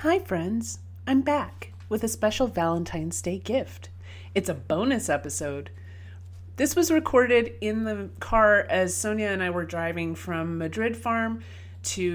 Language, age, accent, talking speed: English, 30-49, American, 150 wpm